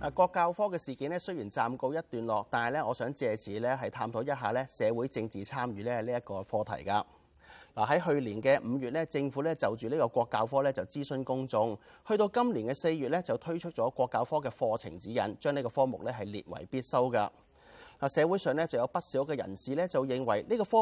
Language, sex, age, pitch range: Chinese, male, 30-49, 115-160 Hz